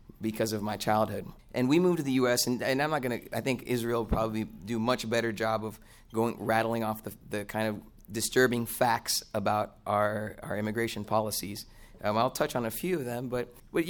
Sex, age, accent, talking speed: male, 30-49, American, 215 wpm